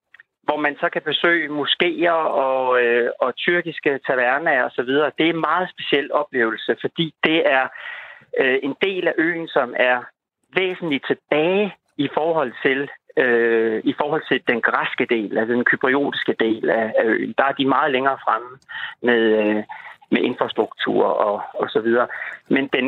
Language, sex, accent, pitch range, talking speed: Danish, male, native, 120-160 Hz, 165 wpm